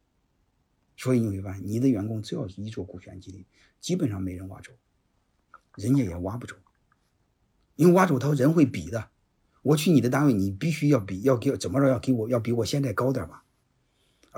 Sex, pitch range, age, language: male, 95-130 Hz, 50-69, Chinese